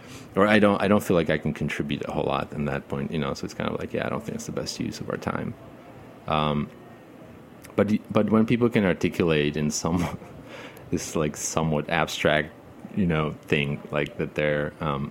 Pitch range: 75-95 Hz